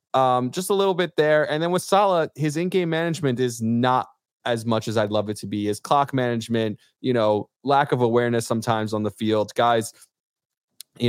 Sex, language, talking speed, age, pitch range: male, English, 200 wpm, 20-39, 110-135 Hz